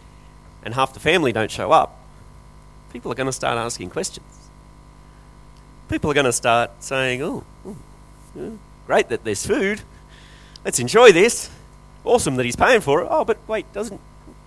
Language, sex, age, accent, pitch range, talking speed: English, male, 30-49, Australian, 125-165 Hz, 160 wpm